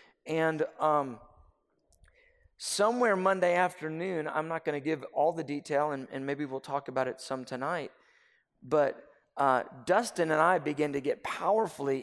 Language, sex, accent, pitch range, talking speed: English, male, American, 150-185 Hz, 150 wpm